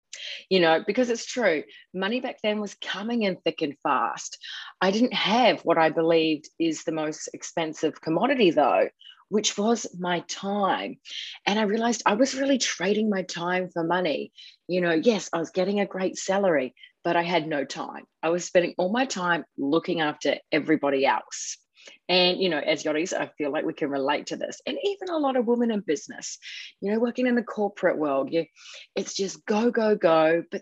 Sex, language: female, English